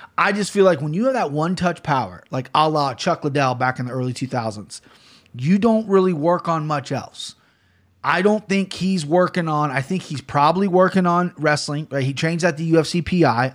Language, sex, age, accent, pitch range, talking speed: English, male, 30-49, American, 135-170 Hz, 215 wpm